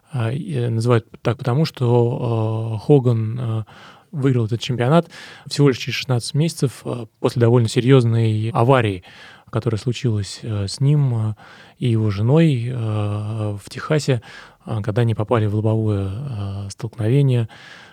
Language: Russian